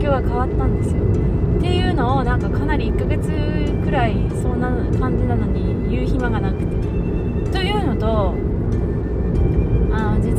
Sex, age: female, 20-39